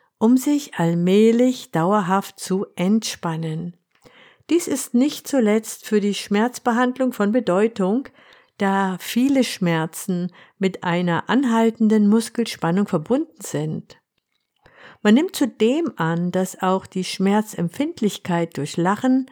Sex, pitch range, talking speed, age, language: female, 180-245 Hz, 105 wpm, 50-69, German